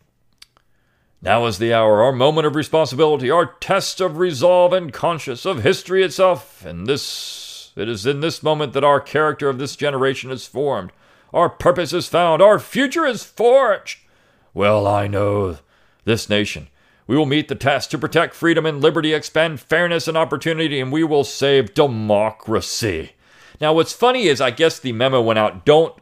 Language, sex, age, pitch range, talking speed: English, male, 40-59, 120-175 Hz, 175 wpm